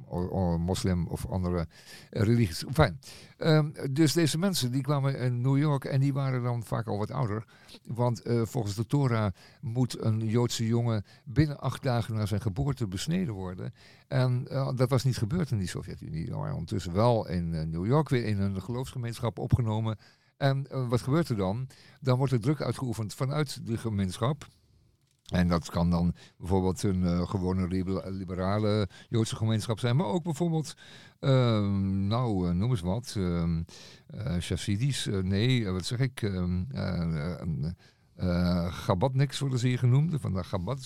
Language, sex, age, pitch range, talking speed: Dutch, male, 50-69, 95-135 Hz, 170 wpm